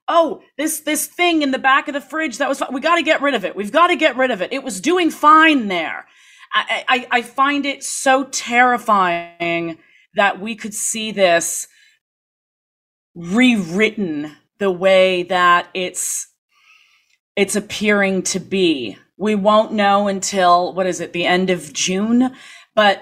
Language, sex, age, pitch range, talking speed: English, female, 30-49, 170-245 Hz, 160 wpm